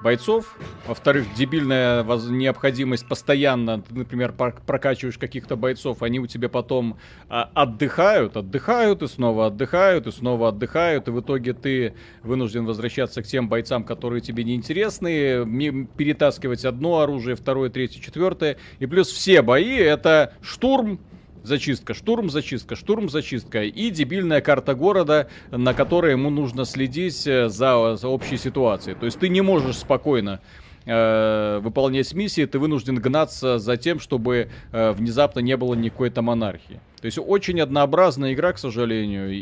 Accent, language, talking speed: native, Russian, 150 wpm